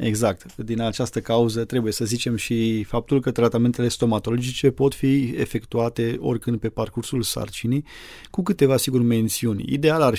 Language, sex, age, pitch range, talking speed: Romanian, male, 30-49, 115-130 Hz, 145 wpm